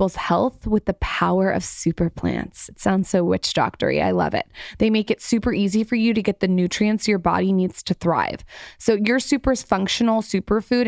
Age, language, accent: 20-39, English, American